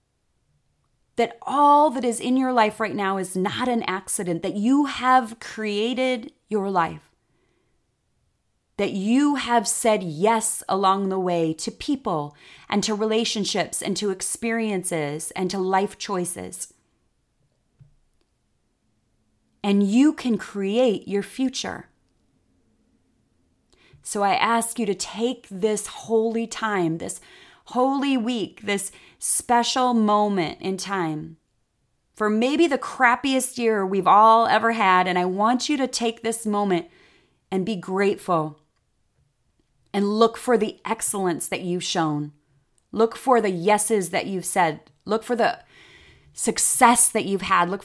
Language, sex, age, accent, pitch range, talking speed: English, female, 30-49, American, 180-230 Hz, 130 wpm